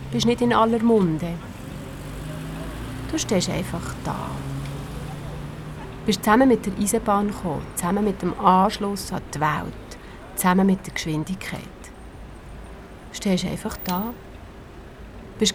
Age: 30-49